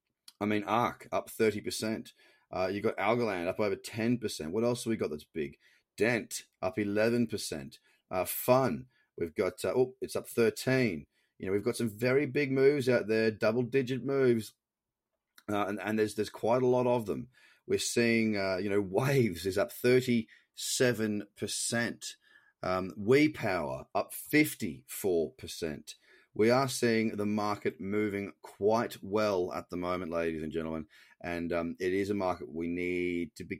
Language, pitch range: English, 100-125 Hz